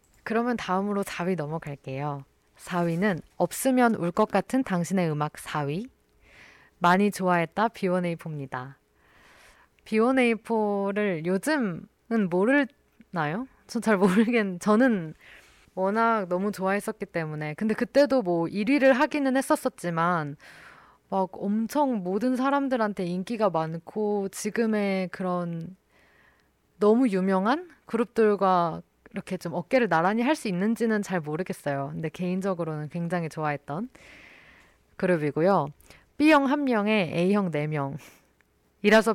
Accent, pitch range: native, 170-225 Hz